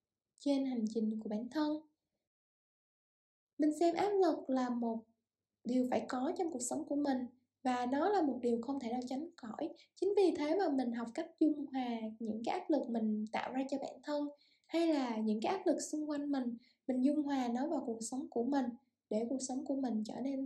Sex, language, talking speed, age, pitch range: female, Vietnamese, 215 wpm, 10-29, 245-315 Hz